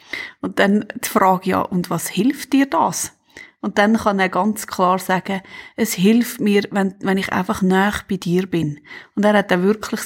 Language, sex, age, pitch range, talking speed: German, female, 30-49, 190-230 Hz, 195 wpm